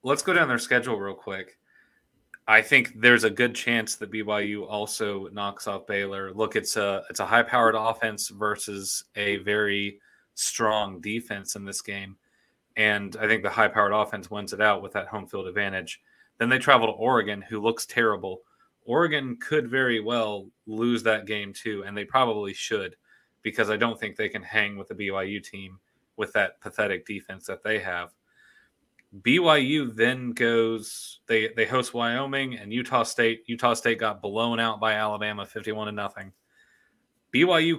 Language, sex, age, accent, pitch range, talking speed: English, male, 30-49, American, 100-115 Hz, 165 wpm